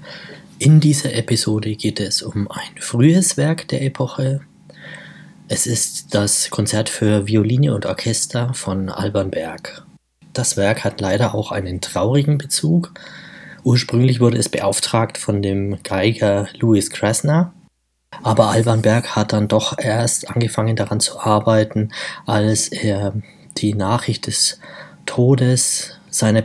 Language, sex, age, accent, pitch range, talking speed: German, male, 20-39, German, 105-135 Hz, 130 wpm